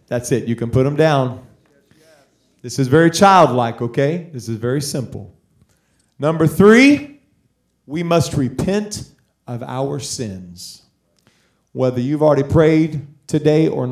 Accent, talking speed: American, 130 wpm